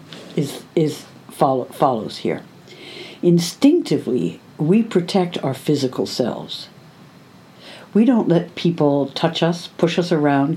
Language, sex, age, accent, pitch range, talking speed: English, female, 60-79, American, 150-195 Hz, 120 wpm